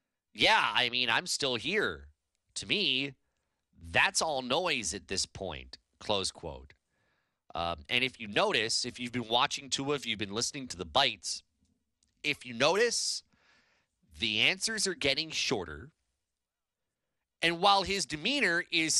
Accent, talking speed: American, 145 wpm